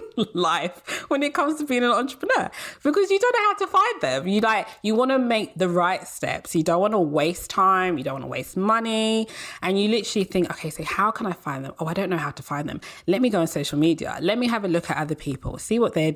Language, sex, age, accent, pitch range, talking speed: English, female, 20-39, British, 155-220 Hz, 270 wpm